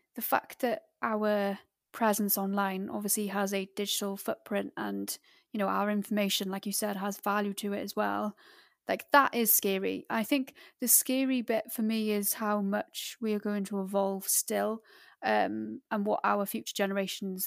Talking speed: 175 wpm